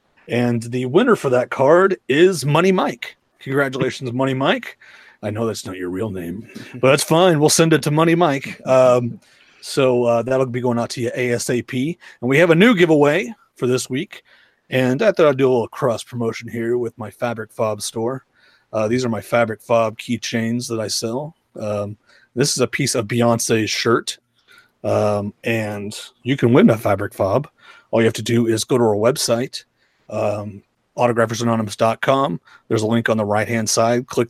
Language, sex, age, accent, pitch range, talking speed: English, male, 30-49, American, 115-140 Hz, 190 wpm